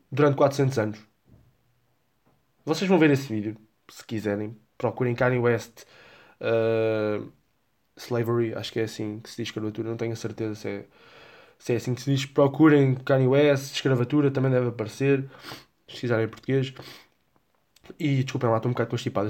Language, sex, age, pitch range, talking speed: Portuguese, male, 20-39, 120-155 Hz, 165 wpm